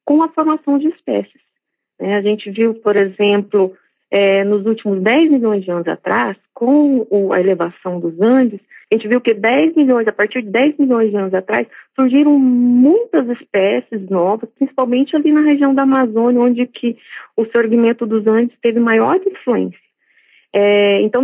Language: Portuguese